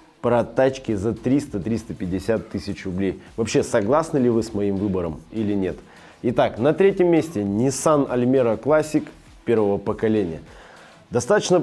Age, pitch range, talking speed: 20-39, 105-150 Hz, 130 wpm